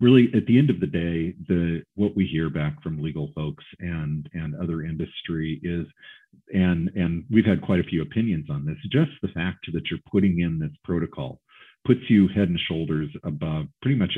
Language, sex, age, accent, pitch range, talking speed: English, male, 40-59, American, 80-95 Hz, 200 wpm